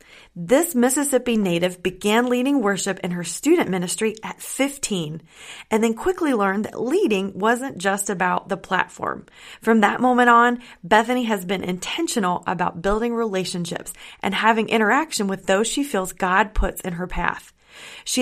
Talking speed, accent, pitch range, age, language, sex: 155 wpm, American, 190-235 Hz, 30-49, English, female